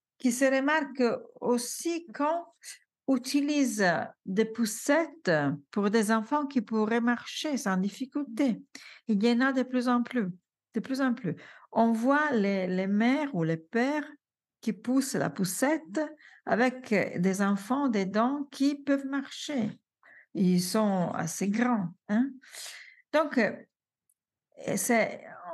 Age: 50-69